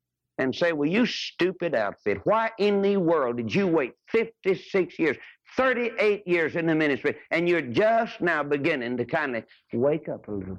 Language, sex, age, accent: English, male, 60-79, American